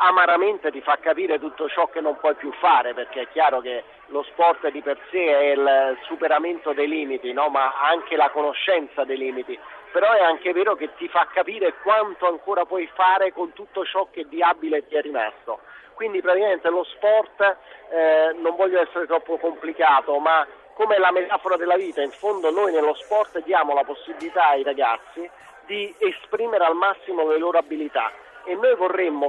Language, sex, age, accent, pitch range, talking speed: Italian, male, 40-59, native, 150-205 Hz, 180 wpm